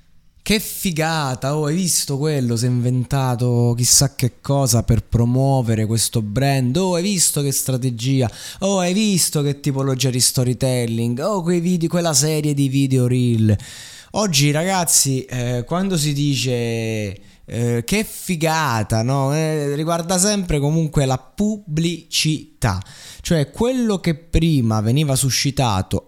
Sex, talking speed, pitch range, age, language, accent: male, 130 wpm, 120-165 Hz, 20-39, Italian, native